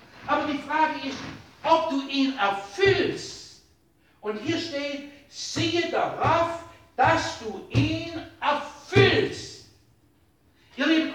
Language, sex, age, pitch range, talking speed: German, male, 60-79, 220-300 Hz, 100 wpm